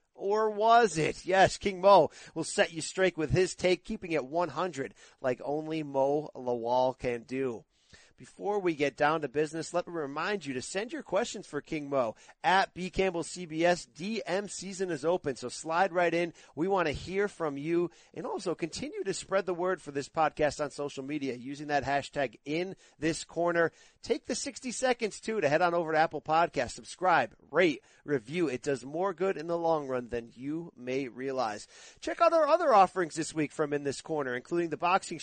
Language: English